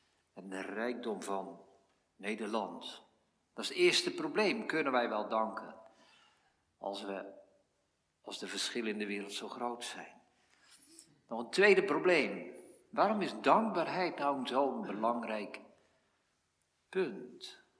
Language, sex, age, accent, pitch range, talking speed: Dutch, male, 50-69, Dutch, 110-160 Hz, 120 wpm